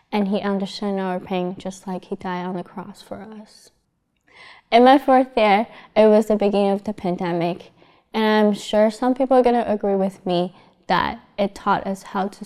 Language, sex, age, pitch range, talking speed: English, female, 10-29, 190-230 Hz, 200 wpm